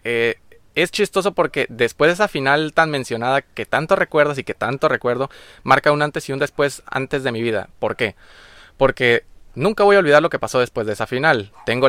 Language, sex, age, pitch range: Spanish, male, 20-39, 115-150 Hz